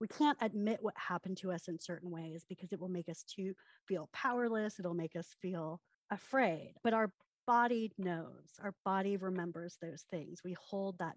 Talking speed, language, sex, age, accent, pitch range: 190 wpm, English, female, 30-49, American, 180-230 Hz